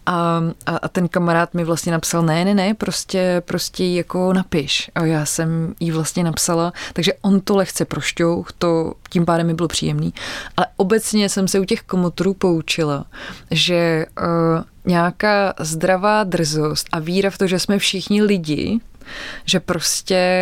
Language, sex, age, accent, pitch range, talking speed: Czech, female, 20-39, native, 160-180 Hz, 155 wpm